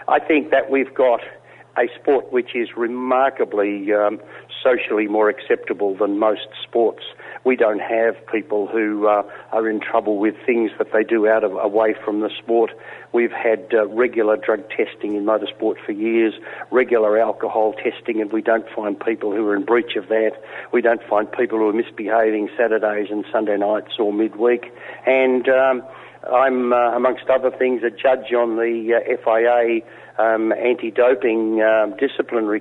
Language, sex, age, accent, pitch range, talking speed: English, male, 50-69, Australian, 110-125 Hz, 175 wpm